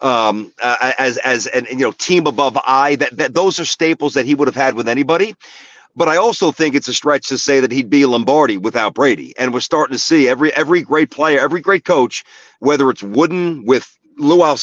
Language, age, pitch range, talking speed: English, 40-59, 130-170 Hz, 220 wpm